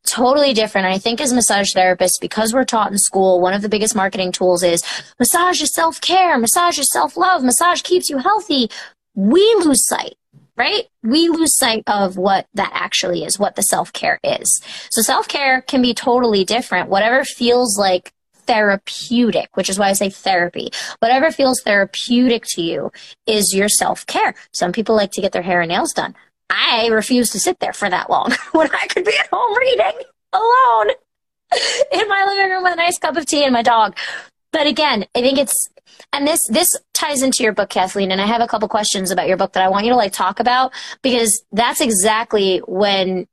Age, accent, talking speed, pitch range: 20-39, American, 195 wpm, 200-285 Hz